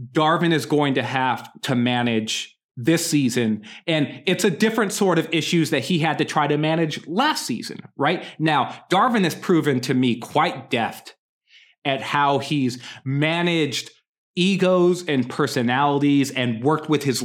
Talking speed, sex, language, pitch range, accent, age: 155 wpm, male, English, 130-165 Hz, American, 30-49